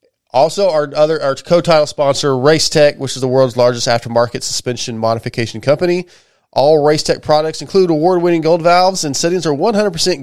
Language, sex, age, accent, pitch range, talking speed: English, male, 30-49, American, 125-150 Hz, 155 wpm